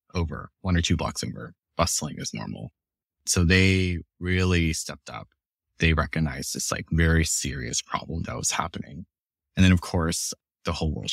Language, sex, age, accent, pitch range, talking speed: English, male, 20-39, American, 80-95 Hz, 165 wpm